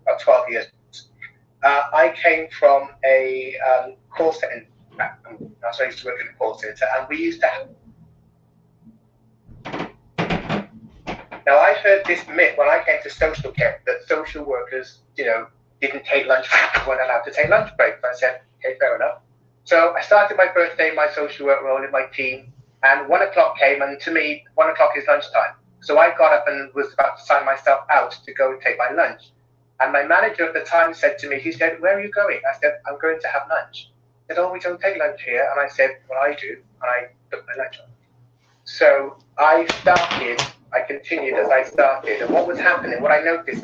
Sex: male